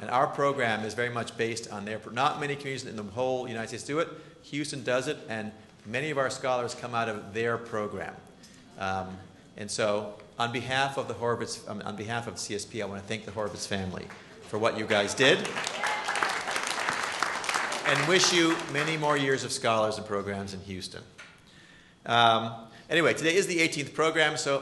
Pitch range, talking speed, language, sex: 115-160 Hz, 190 wpm, English, male